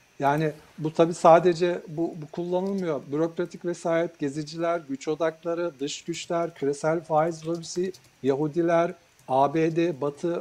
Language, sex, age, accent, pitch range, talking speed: Turkish, male, 60-79, native, 145-185 Hz, 115 wpm